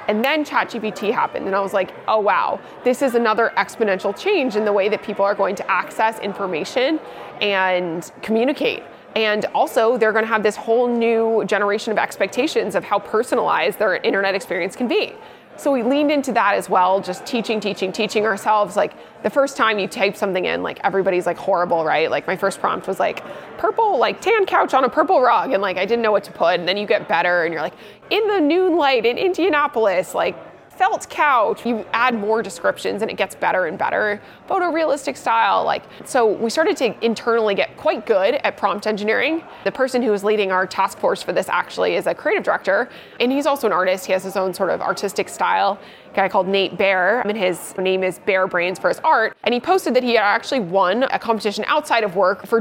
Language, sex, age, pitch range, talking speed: English, female, 20-39, 195-260 Hz, 220 wpm